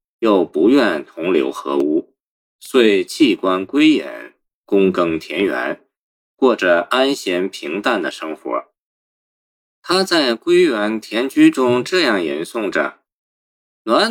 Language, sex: Chinese, male